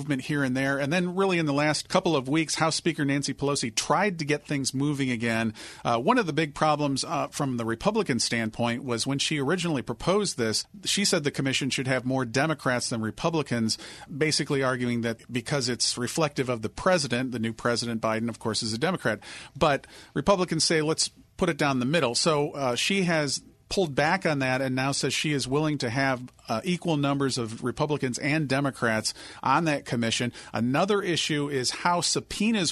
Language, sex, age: English, male, 40-59